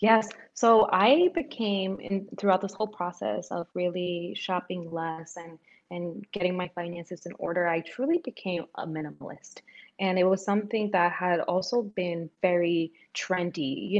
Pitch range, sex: 170-215 Hz, female